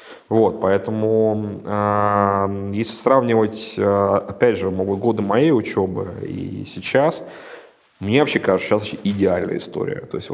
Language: Russian